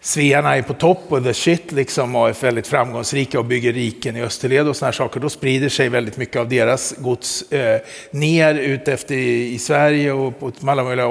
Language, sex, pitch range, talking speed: Swedish, male, 120-140 Hz, 210 wpm